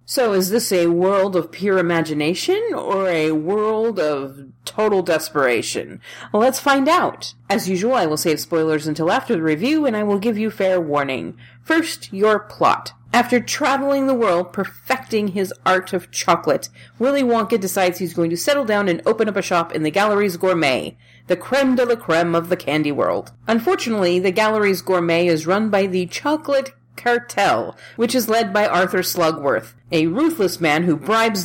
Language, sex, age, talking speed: English, female, 40-59, 180 wpm